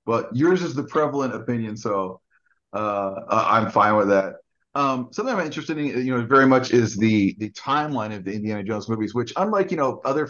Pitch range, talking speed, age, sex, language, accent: 110-130 Hz, 205 wpm, 30-49, male, English, American